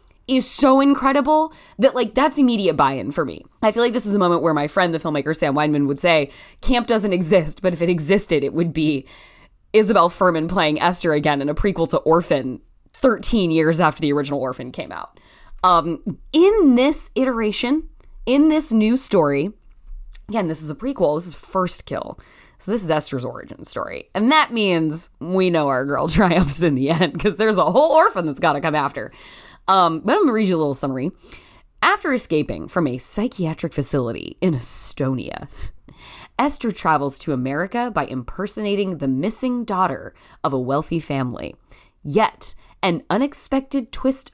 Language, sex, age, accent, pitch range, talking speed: English, female, 20-39, American, 155-240 Hz, 180 wpm